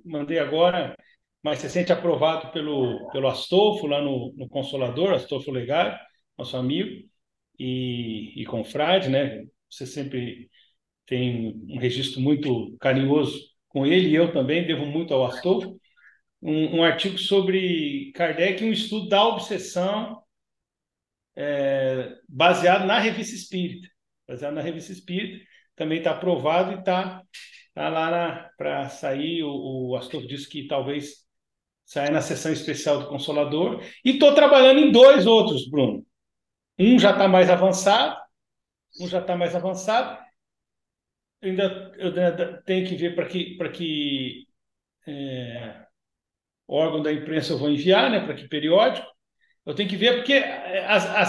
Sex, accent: male, Brazilian